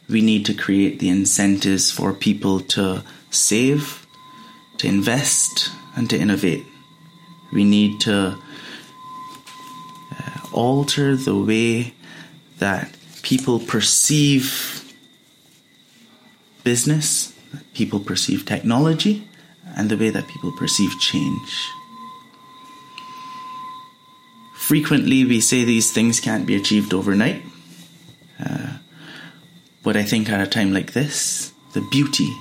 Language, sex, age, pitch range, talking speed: English, male, 30-49, 105-170 Hz, 105 wpm